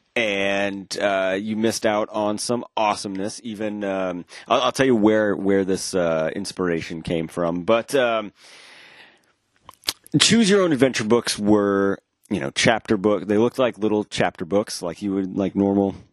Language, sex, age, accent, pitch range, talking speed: English, male, 30-49, American, 95-115 Hz, 165 wpm